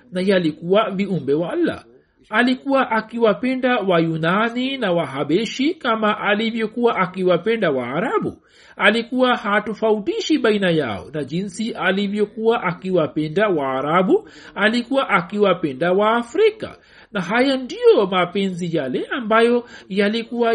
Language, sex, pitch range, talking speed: Swahili, male, 185-230 Hz, 105 wpm